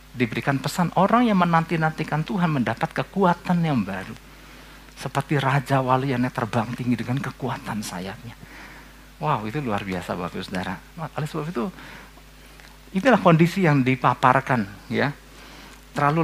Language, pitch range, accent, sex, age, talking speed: Indonesian, 135-190 Hz, native, male, 50-69, 130 wpm